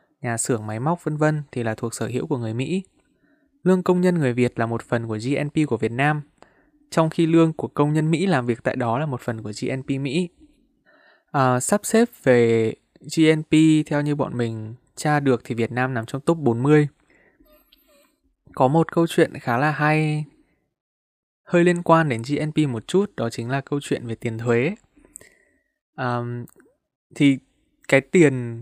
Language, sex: Vietnamese, male